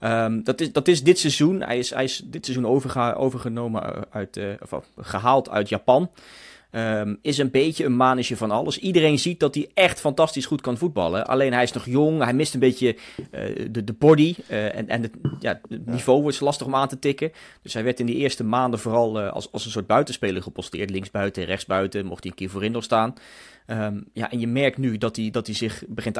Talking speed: 230 wpm